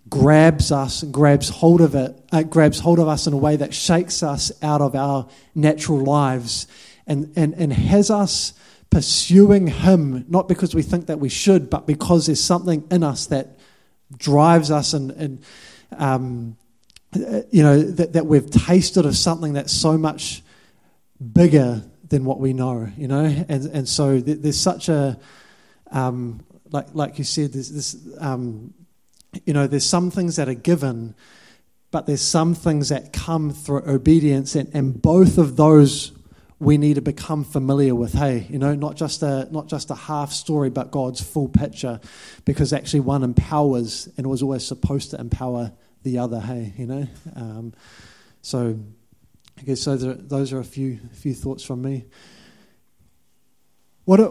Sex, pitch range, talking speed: male, 130-160 Hz, 170 wpm